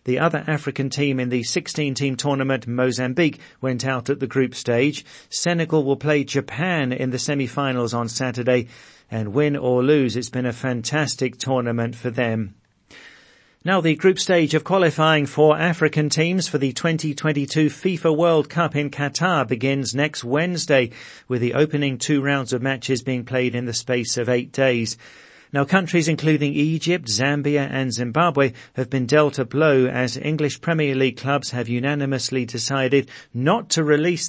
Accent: British